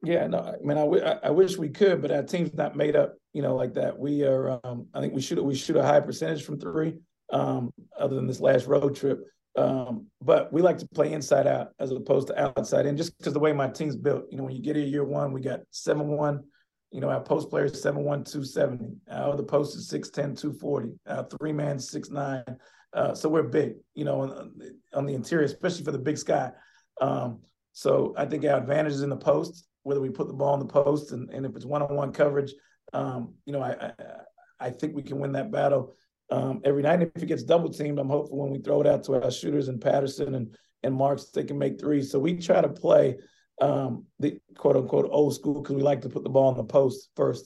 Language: English